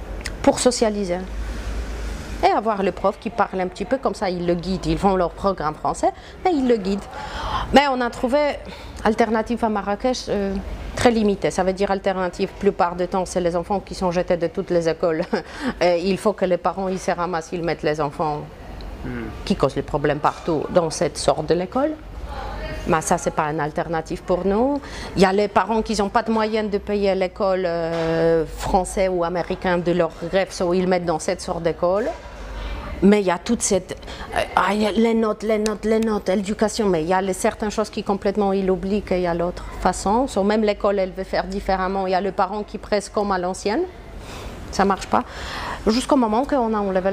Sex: female